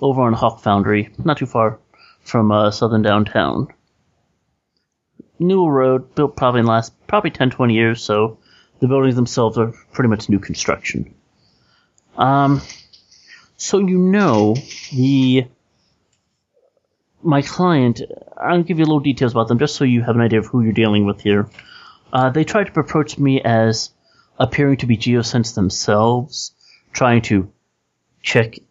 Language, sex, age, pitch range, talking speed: English, male, 30-49, 110-140 Hz, 155 wpm